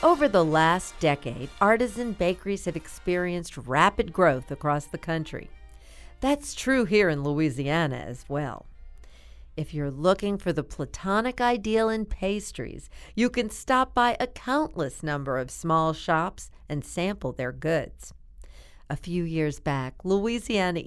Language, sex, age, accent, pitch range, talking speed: English, female, 50-69, American, 140-205 Hz, 140 wpm